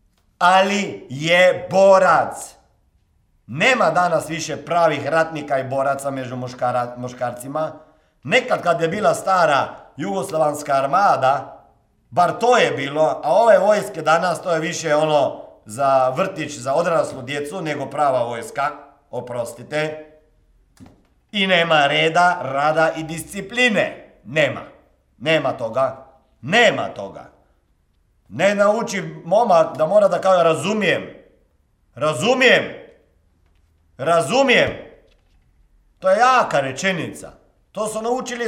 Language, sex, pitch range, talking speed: Croatian, male, 155-240 Hz, 105 wpm